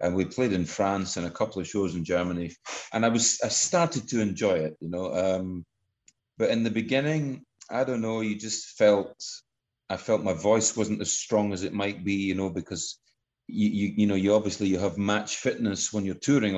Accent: British